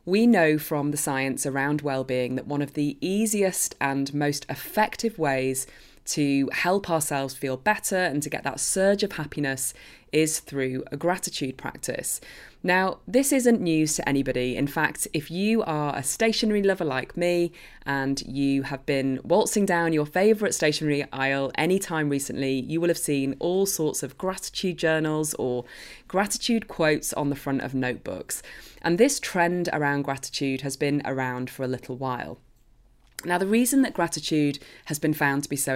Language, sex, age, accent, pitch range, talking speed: English, female, 20-39, British, 135-185 Hz, 175 wpm